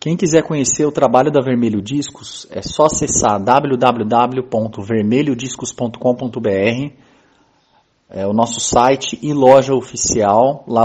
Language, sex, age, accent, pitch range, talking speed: Portuguese, male, 30-49, Brazilian, 120-155 Hz, 105 wpm